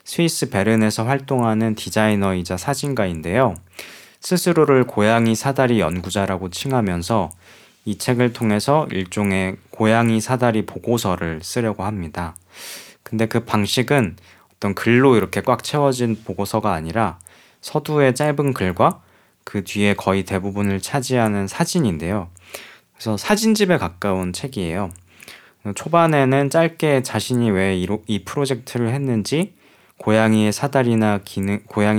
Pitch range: 95-120 Hz